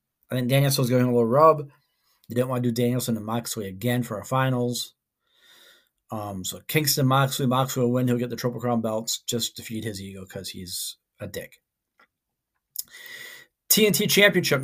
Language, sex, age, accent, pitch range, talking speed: English, male, 40-59, American, 115-145 Hz, 180 wpm